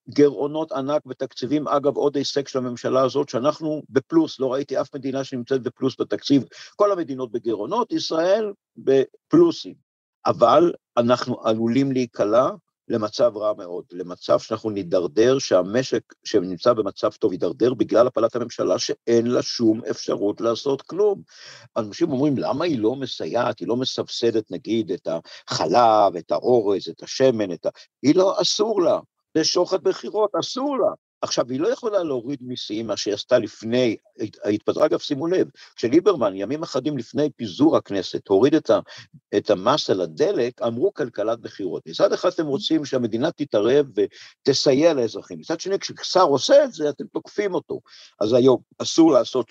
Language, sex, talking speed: Hebrew, male, 150 wpm